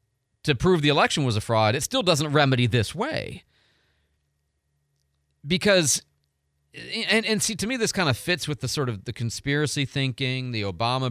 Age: 40-59